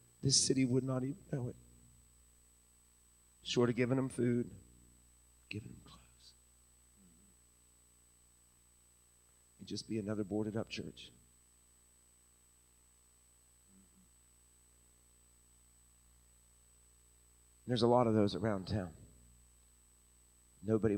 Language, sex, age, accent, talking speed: English, male, 40-59, American, 90 wpm